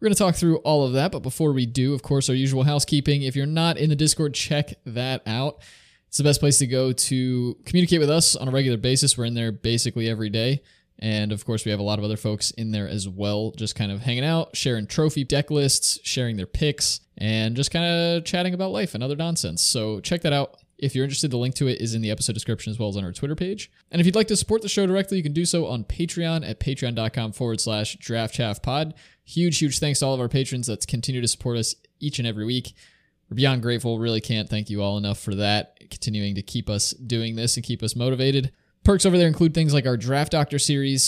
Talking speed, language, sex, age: 255 wpm, English, male, 20-39